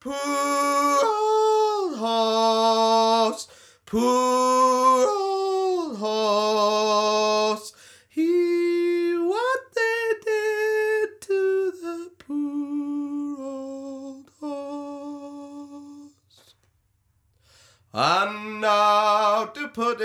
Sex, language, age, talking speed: male, English, 30-49, 55 wpm